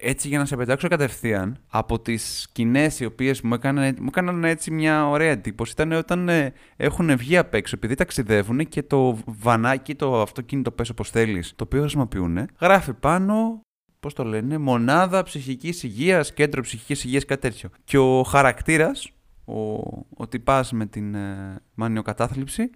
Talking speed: 160 wpm